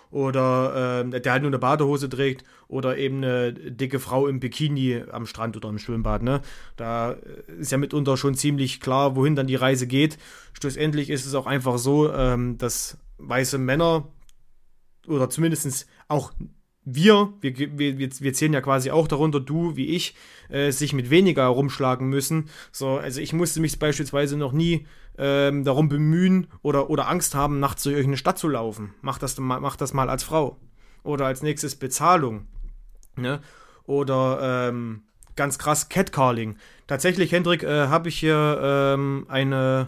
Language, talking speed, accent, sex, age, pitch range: German, 165 wpm, German, male, 30-49, 130-155 Hz